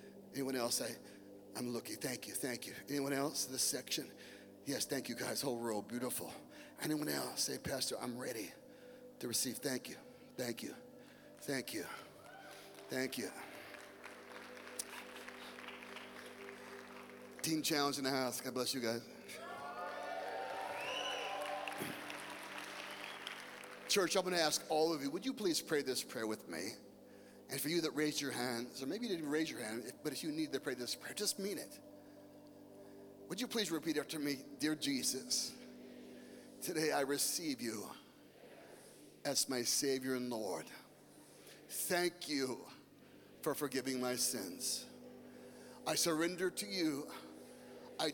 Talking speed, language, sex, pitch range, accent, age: 140 wpm, English, male, 125-165 Hz, American, 40-59